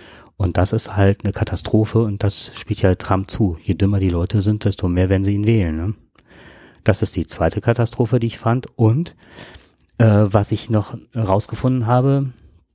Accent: German